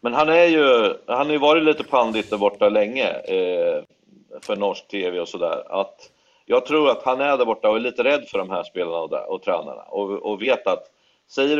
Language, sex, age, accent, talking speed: Swedish, male, 40-59, native, 210 wpm